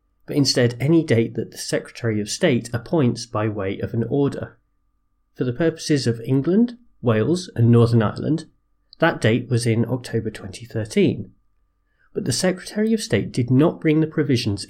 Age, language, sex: 30-49, English, male